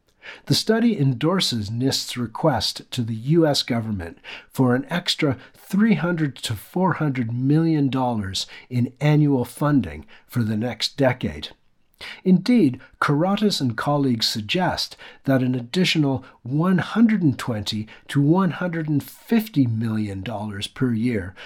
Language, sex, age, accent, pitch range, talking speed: English, male, 50-69, American, 110-150 Hz, 105 wpm